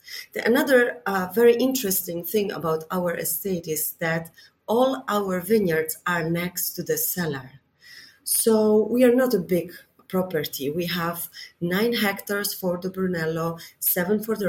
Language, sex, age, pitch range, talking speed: English, female, 30-49, 155-195 Hz, 145 wpm